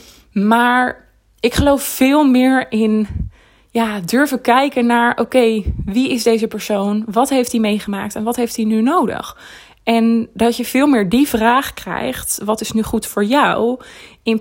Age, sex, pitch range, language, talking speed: 20-39, female, 210-245 Hz, Dutch, 170 wpm